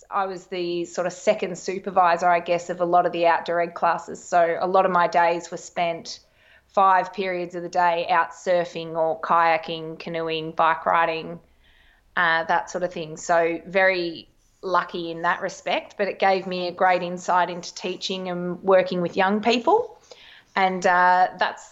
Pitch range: 175-195 Hz